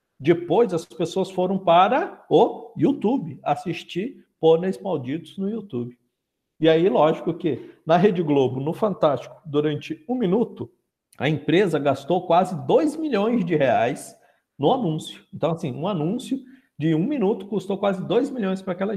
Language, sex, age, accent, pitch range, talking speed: Portuguese, male, 50-69, Brazilian, 145-200 Hz, 150 wpm